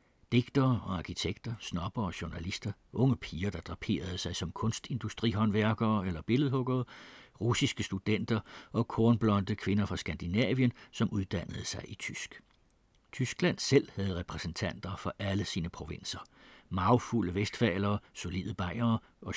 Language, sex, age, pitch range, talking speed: Danish, male, 60-79, 90-120 Hz, 125 wpm